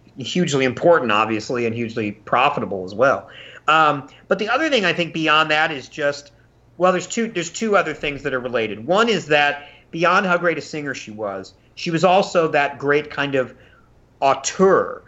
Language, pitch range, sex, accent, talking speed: English, 140-180 Hz, male, American, 185 wpm